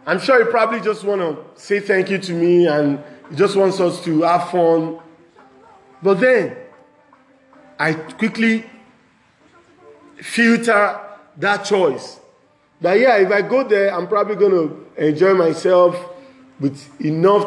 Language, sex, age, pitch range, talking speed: English, male, 40-59, 175-235 Hz, 135 wpm